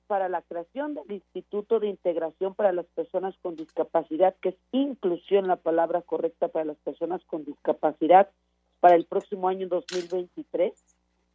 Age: 50-69